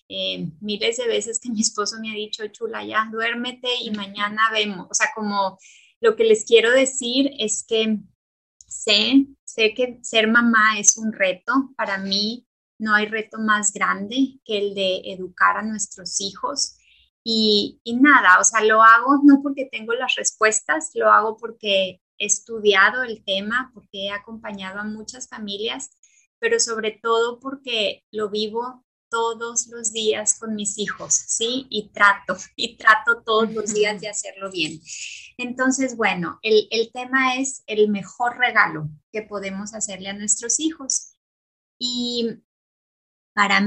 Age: 20-39